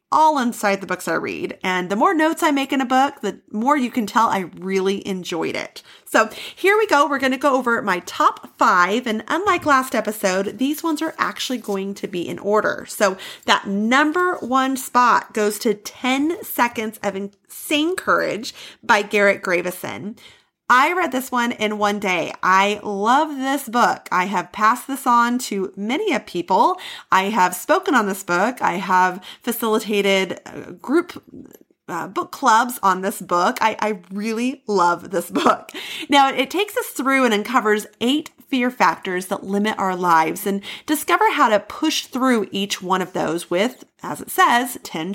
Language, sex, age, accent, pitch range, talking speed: English, female, 30-49, American, 195-275 Hz, 180 wpm